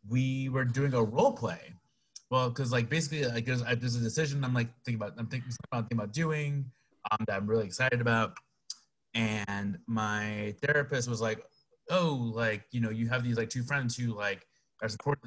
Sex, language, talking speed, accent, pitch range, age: male, English, 195 wpm, American, 110-135 Hz, 20-39